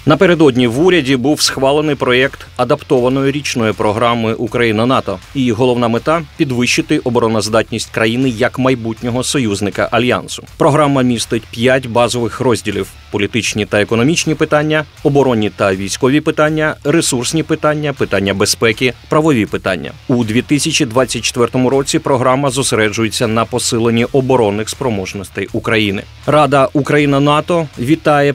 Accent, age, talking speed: native, 30-49, 115 wpm